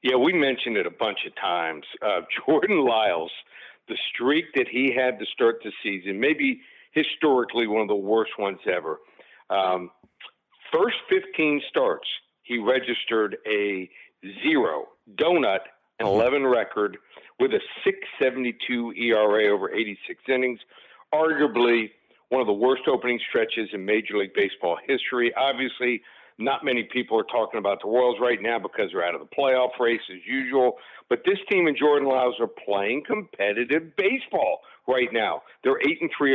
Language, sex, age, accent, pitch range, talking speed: English, male, 60-79, American, 115-165 Hz, 155 wpm